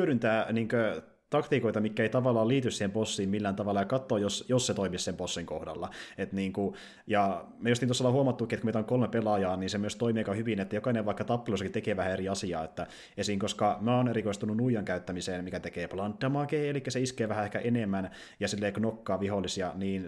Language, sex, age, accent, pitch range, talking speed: Finnish, male, 30-49, native, 95-115 Hz, 210 wpm